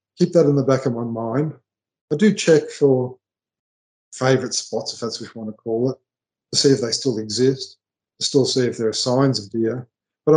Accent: Australian